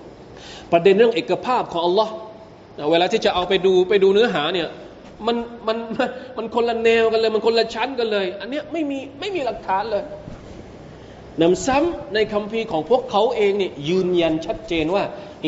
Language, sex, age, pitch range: Thai, male, 20-39, 140-215 Hz